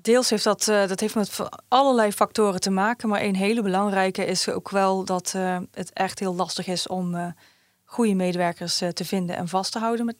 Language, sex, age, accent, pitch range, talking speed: Dutch, female, 20-39, Dutch, 185-205 Hz, 195 wpm